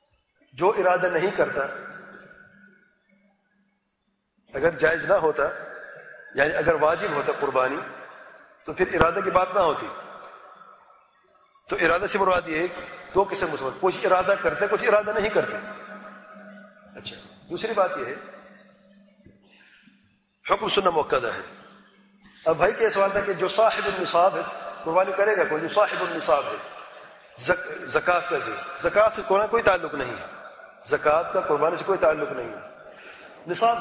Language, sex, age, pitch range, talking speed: English, male, 40-59, 155-210 Hz, 135 wpm